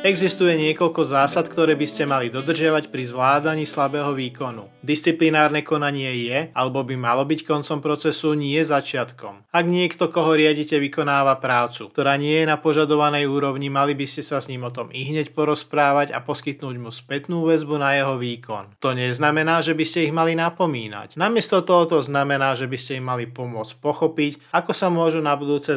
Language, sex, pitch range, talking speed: Slovak, male, 130-160 Hz, 180 wpm